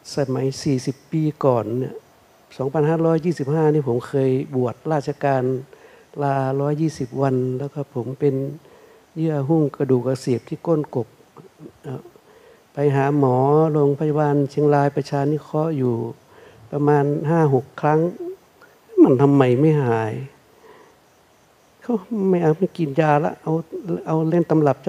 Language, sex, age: Thai, male, 60-79